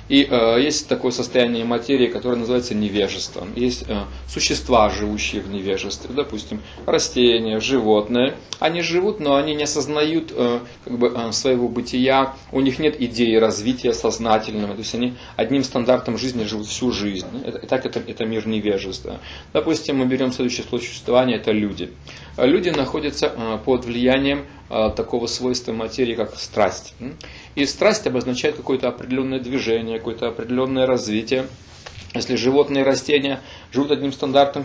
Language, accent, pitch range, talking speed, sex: Russian, native, 115-140 Hz, 145 wpm, male